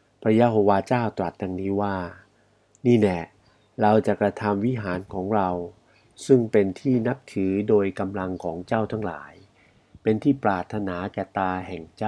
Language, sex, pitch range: Thai, male, 95-115 Hz